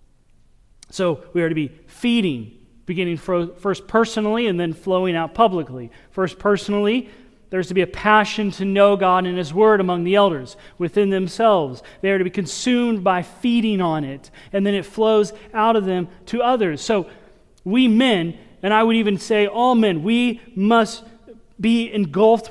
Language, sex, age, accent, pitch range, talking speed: English, male, 30-49, American, 170-220 Hz, 170 wpm